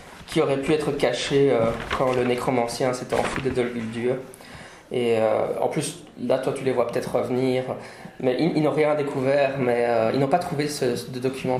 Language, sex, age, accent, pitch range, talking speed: English, male, 20-39, French, 125-150 Hz, 210 wpm